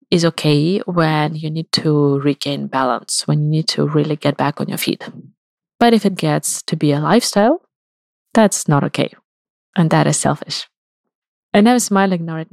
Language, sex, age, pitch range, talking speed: English, female, 20-39, 150-195 Hz, 180 wpm